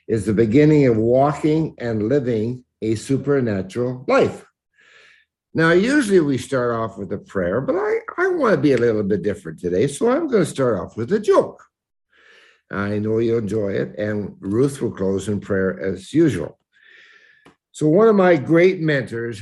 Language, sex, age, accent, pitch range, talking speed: English, male, 60-79, American, 105-145 Hz, 170 wpm